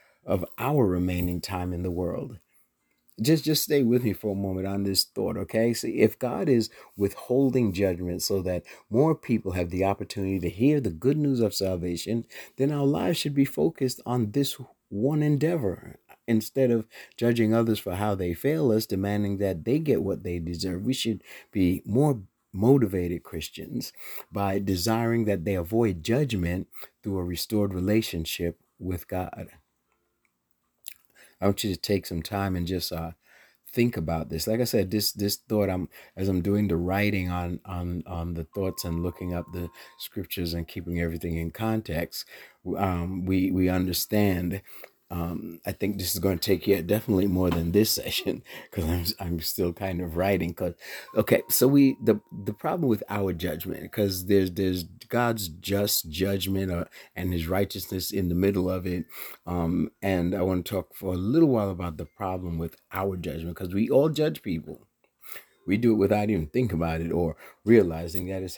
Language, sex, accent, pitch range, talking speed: English, male, American, 90-110 Hz, 180 wpm